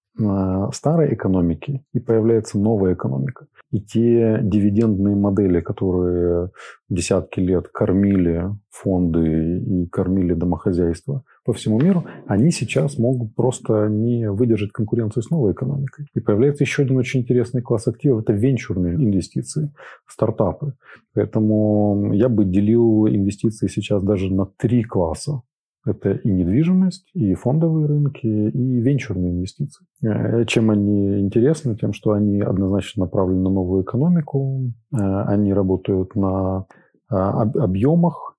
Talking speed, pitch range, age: 120 wpm, 100-125 Hz, 30-49